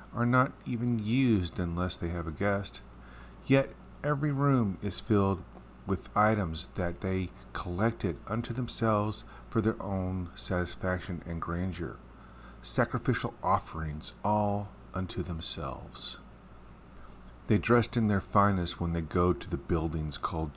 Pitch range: 80-110 Hz